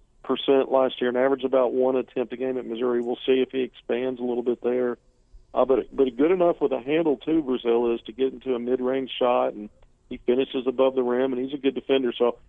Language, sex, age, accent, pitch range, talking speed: English, male, 50-69, American, 120-135 Hz, 240 wpm